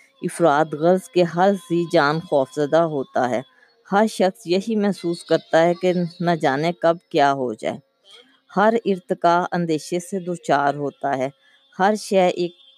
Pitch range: 155-195 Hz